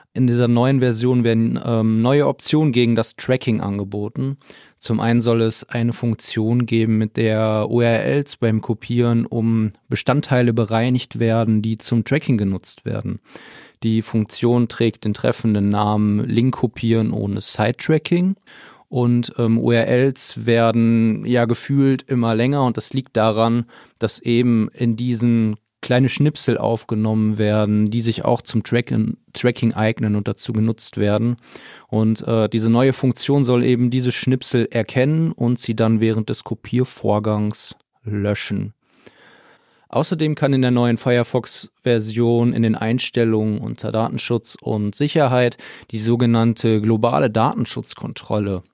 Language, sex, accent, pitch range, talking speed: German, male, German, 110-125 Hz, 130 wpm